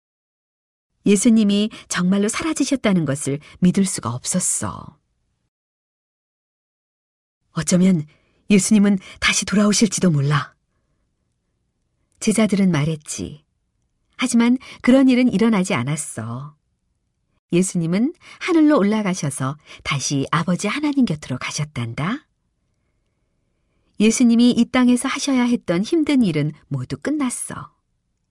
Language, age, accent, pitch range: Korean, 40-59, native, 150-235 Hz